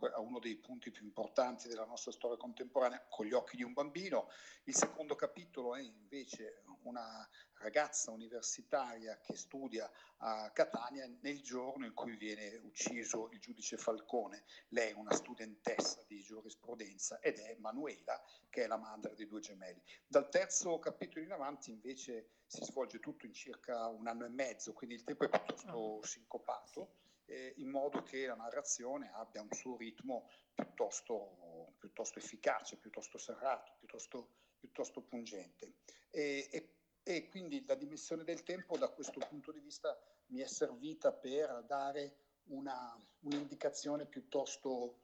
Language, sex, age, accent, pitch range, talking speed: Italian, male, 50-69, native, 115-160 Hz, 150 wpm